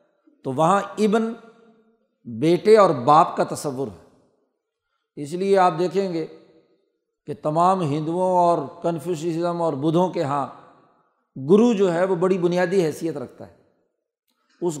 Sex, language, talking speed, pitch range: male, Urdu, 135 wpm, 160-210 Hz